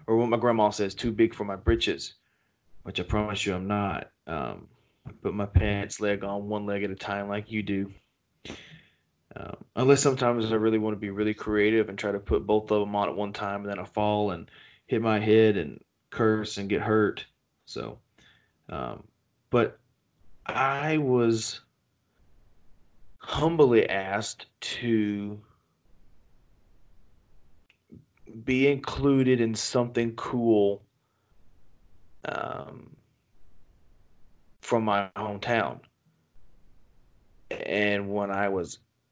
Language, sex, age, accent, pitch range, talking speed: English, male, 30-49, American, 100-115 Hz, 130 wpm